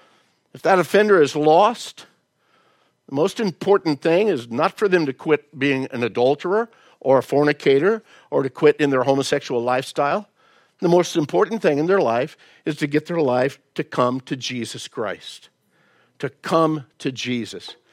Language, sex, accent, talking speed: English, male, American, 165 wpm